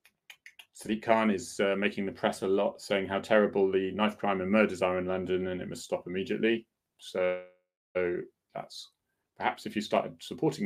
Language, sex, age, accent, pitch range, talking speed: English, male, 30-49, British, 105-150 Hz, 185 wpm